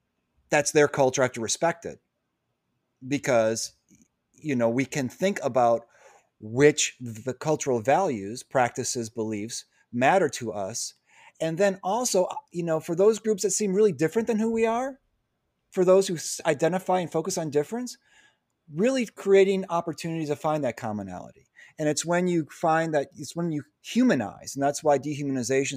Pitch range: 125-170 Hz